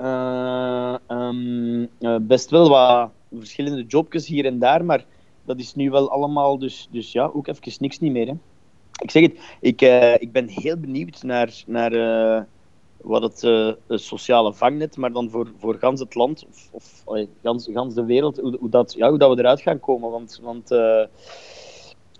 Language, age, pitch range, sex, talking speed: Dutch, 30-49, 115-140 Hz, male, 185 wpm